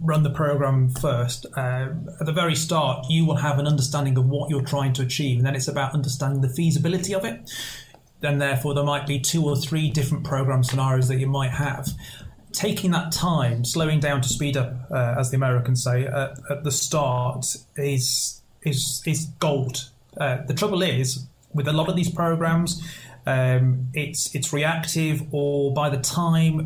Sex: male